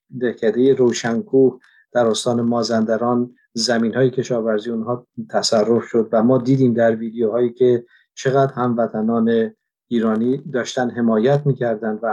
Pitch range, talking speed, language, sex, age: 115-140 Hz, 120 wpm, Persian, male, 50-69